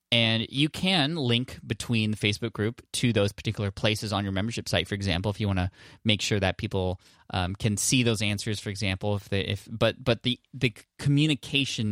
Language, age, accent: English, 20-39, American